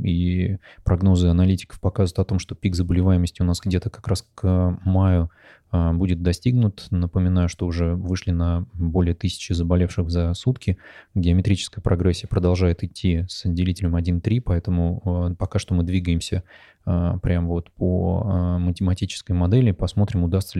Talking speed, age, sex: 135 wpm, 20-39, male